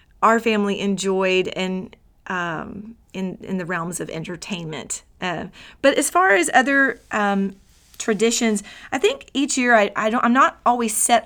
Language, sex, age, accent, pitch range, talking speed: English, female, 30-49, American, 195-230 Hz, 160 wpm